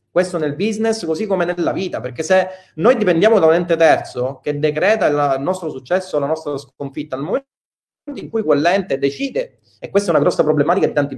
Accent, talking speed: native, 200 wpm